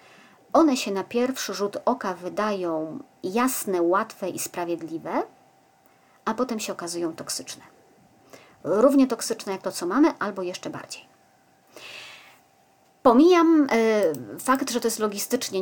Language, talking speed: Polish, 120 wpm